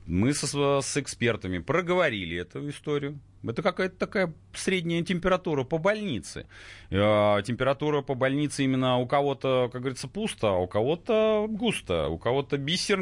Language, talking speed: Russian, 140 wpm